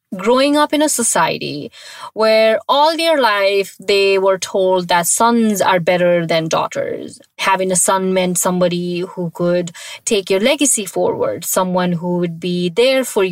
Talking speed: 160 wpm